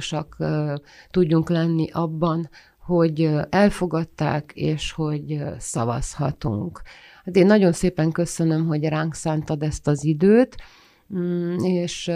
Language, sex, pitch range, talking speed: Hungarian, female, 155-180 Hz, 100 wpm